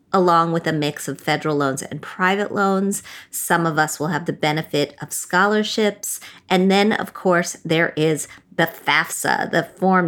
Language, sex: English, female